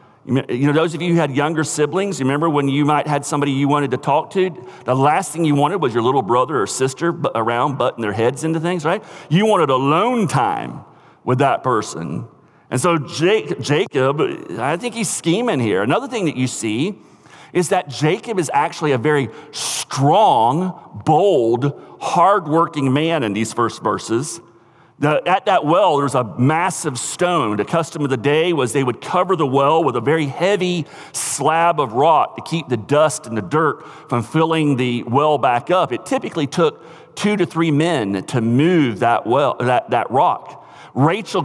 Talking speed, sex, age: 185 wpm, male, 40-59